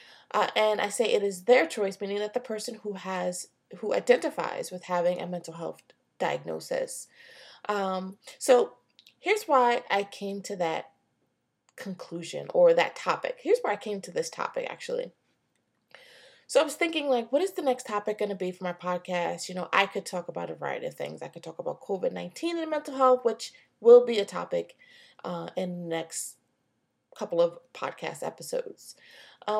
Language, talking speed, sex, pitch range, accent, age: English, 180 wpm, female, 185-305 Hz, American, 20-39